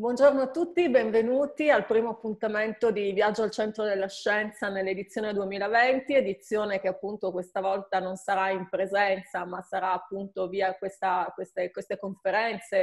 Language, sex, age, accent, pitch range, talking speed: Italian, female, 30-49, native, 190-225 Hz, 145 wpm